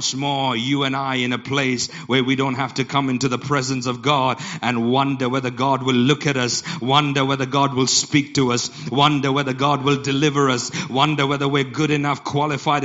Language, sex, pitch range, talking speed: English, male, 145-205 Hz, 210 wpm